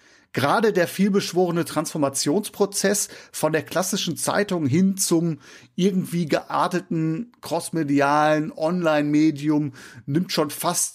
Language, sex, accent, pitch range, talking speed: German, male, German, 140-180 Hz, 95 wpm